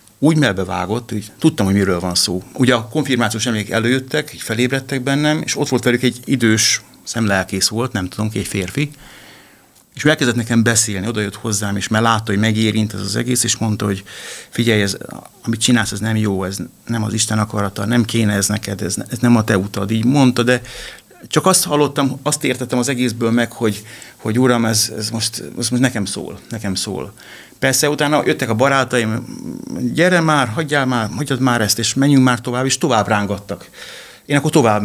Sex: male